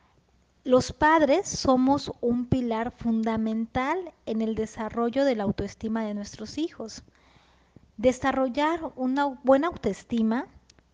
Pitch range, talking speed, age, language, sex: 215-270 Hz, 105 wpm, 20-39, Spanish, female